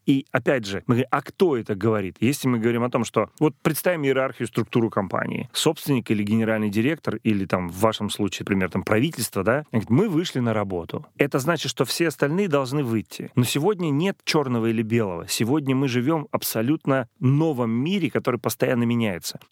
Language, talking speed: Russian, 185 wpm